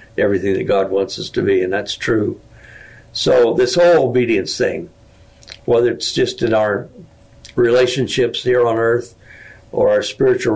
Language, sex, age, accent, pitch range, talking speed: English, male, 60-79, American, 110-150 Hz, 155 wpm